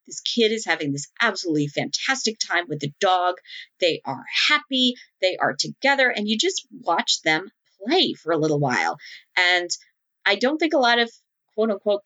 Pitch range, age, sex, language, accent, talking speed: 175-260 Hz, 40-59, female, English, American, 180 wpm